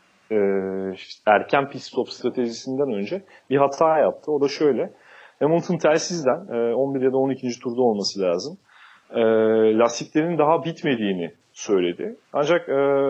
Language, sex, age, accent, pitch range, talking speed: Turkish, male, 40-59, native, 115-165 Hz, 115 wpm